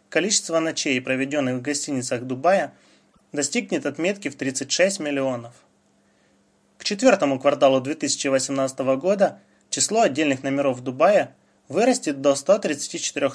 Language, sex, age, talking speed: Russian, male, 20-39, 110 wpm